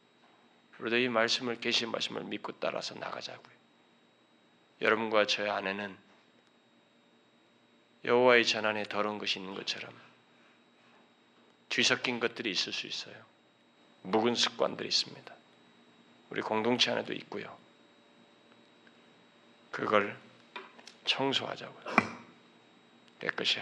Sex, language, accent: male, Korean, native